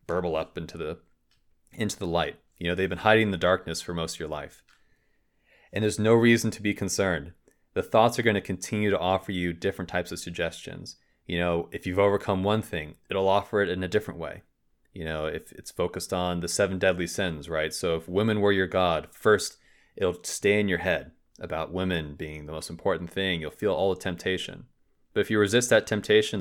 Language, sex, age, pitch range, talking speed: English, male, 30-49, 85-105 Hz, 215 wpm